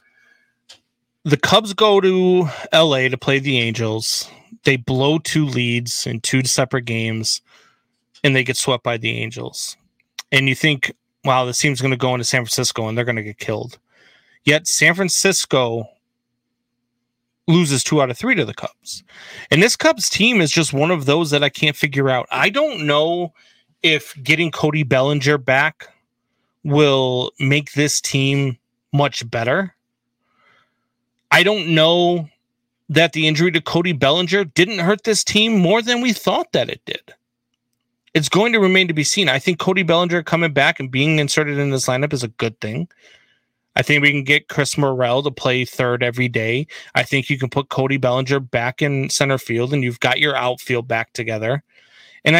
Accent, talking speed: American, 175 wpm